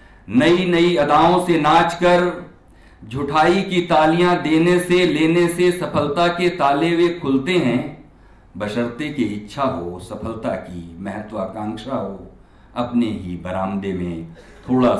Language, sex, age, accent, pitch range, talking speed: Hindi, male, 50-69, native, 100-150 Hz, 130 wpm